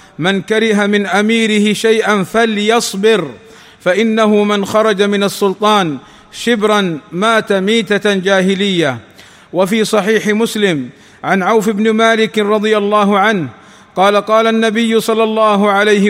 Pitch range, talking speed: 200-220 Hz, 115 wpm